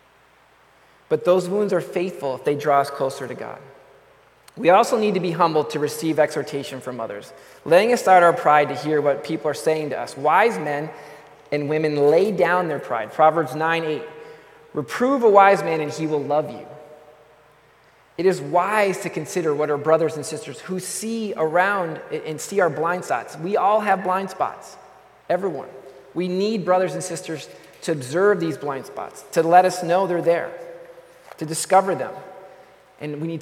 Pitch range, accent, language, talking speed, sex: 150-190 Hz, American, English, 180 wpm, male